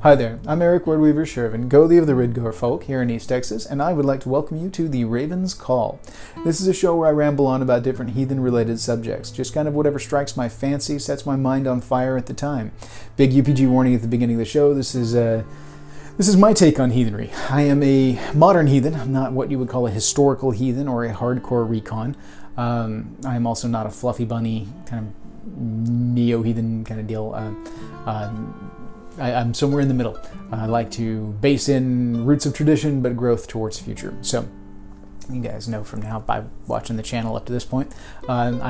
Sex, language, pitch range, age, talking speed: male, English, 115-140 Hz, 30-49, 215 wpm